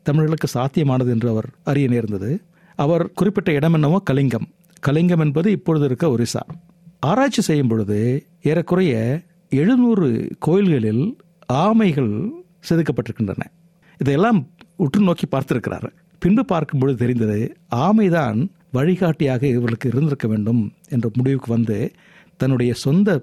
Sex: male